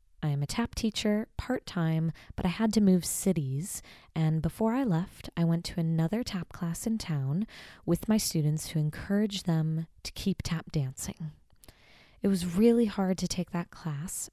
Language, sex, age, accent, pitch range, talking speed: English, female, 20-39, American, 160-200 Hz, 175 wpm